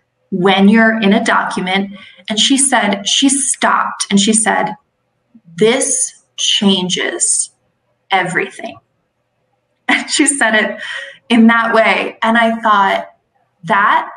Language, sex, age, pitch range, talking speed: English, female, 20-39, 195-235 Hz, 115 wpm